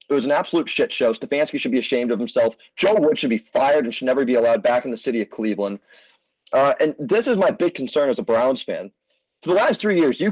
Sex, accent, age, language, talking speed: male, American, 30-49, English, 260 wpm